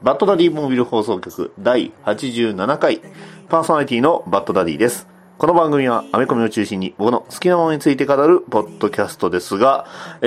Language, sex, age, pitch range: Japanese, male, 40-59, 90-145 Hz